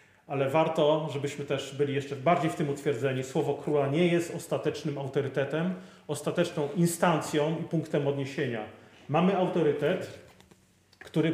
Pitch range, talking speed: 130-160 Hz, 125 wpm